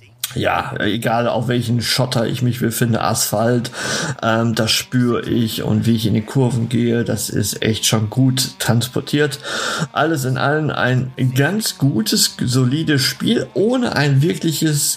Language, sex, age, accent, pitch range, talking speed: German, male, 50-69, German, 120-170 Hz, 150 wpm